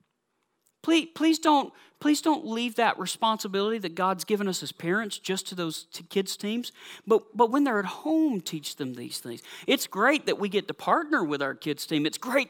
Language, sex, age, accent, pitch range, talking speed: English, male, 40-59, American, 175-240 Hz, 200 wpm